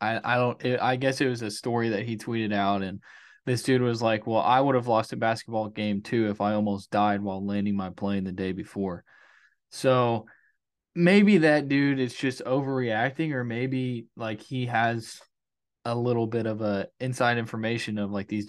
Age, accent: 20-39, American